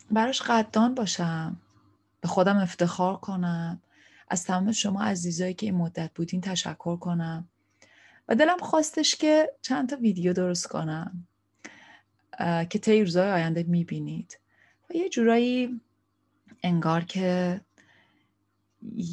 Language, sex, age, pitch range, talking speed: Persian, female, 30-49, 160-215 Hz, 115 wpm